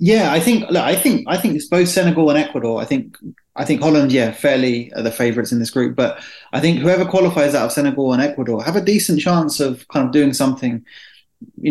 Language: English